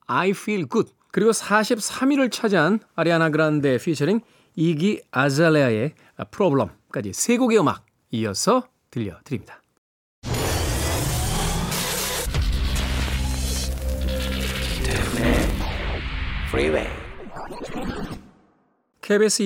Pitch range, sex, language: 140-210 Hz, male, Korean